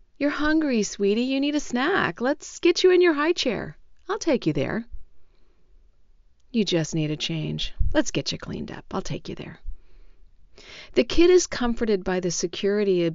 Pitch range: 165-210 Hz